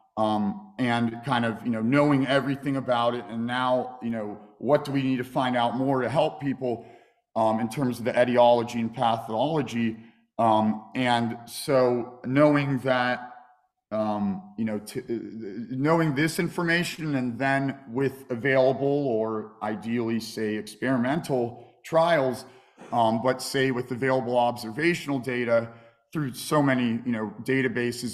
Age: 40-59